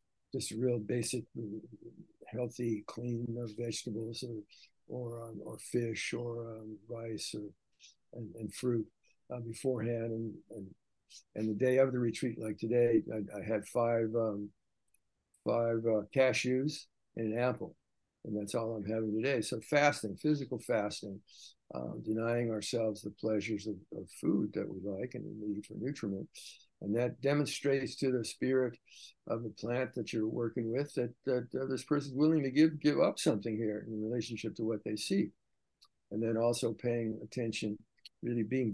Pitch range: 110-125 Hz